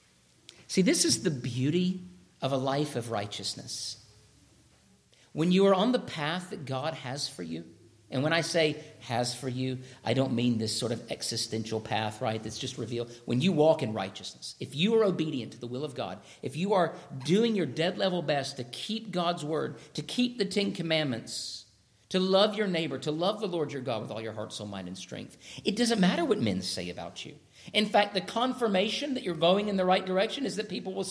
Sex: male